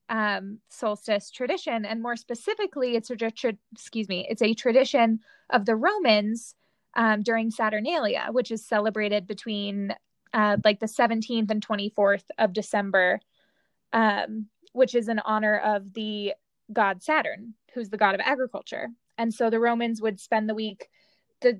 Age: 20-39